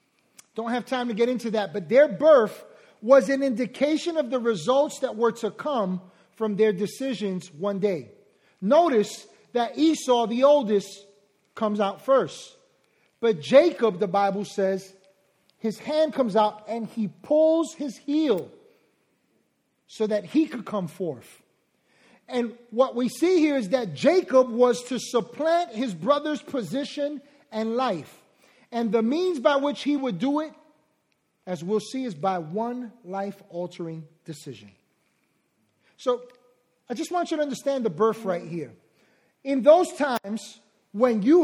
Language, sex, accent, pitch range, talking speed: English, male, American, 205-285 Hz, 150 wpm